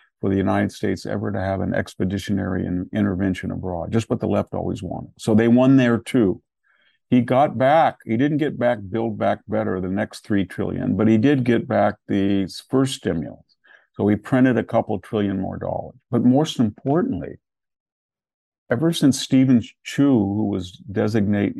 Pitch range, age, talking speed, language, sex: 100-120 Hz, 50-69, 175 wpm, English, male